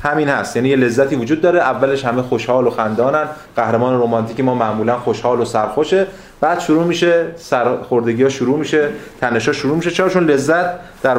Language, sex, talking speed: Persian, male, 175 wpm